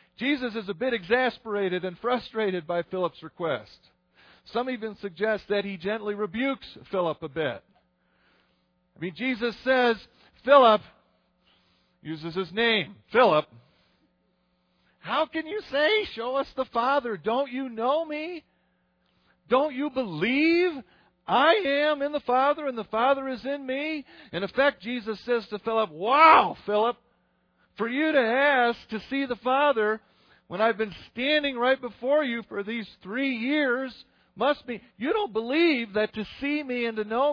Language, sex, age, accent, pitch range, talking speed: English, male, 50-69, American, 155-260 Hz, 150 wpm